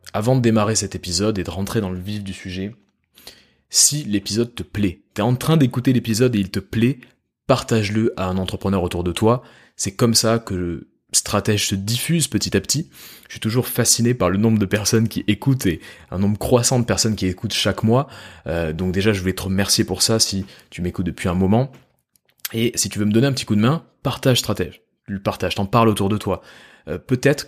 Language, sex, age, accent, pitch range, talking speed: French, male, 20-39, French, 95-115 Hz, 225 wpm